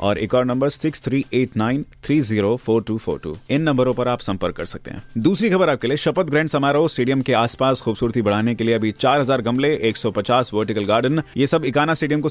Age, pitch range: 30-49, 110-135 Hz